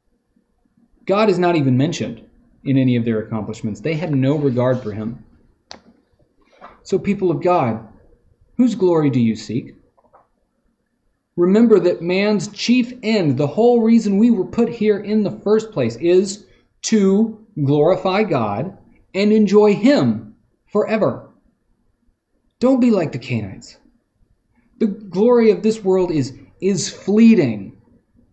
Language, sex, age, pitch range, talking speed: English, male, 30-49, 135-210 Hz, 130 wpm